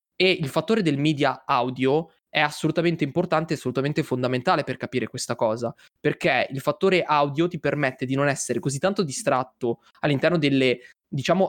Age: 20-39